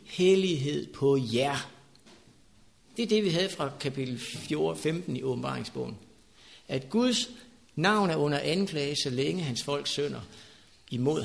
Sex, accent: male, native